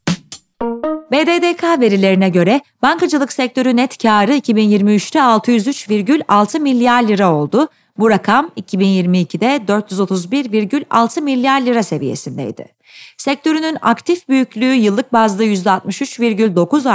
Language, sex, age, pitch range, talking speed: Turkish, female, 30-49, 205-275 Hz, 90 wpm